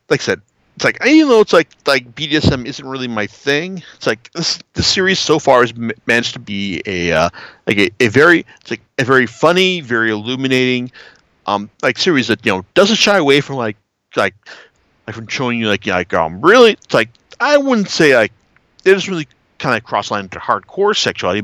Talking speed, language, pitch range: 215 wpm, English, 110-165 Hz